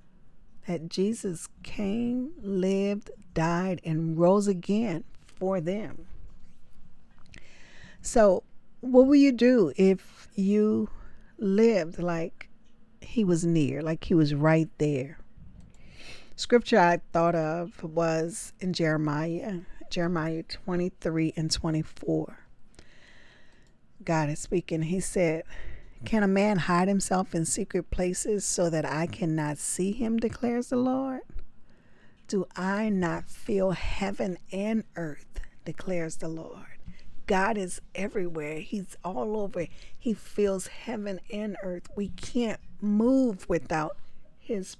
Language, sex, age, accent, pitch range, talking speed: English, female, 40-59, American, 165-210 Hz, 115 wpm